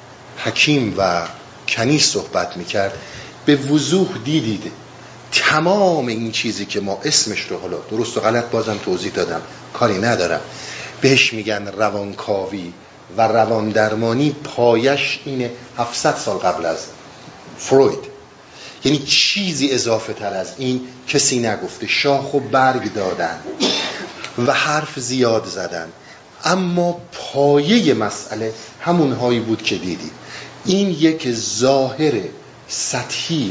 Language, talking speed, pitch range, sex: Persian, 115 wpm, 110-150 Hz, male